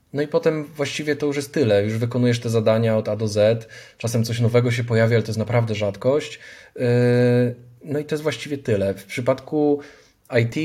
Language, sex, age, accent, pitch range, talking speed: Polish, male, 20-39, native, 110-130 Hz, 195 wpm